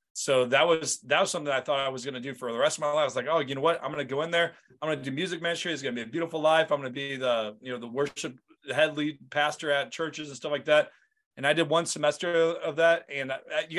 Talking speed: 320 wpm